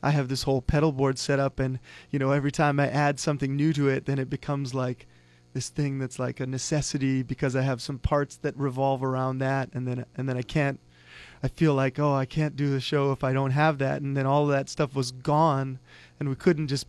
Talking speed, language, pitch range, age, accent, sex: 250 wpm, English, 130-150 Hz, 30-49, American, male